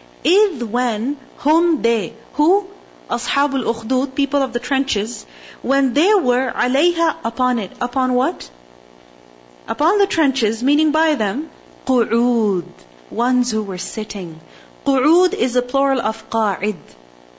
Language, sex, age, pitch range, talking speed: English, female, 40-59, 185-275 Hz, 125 wpm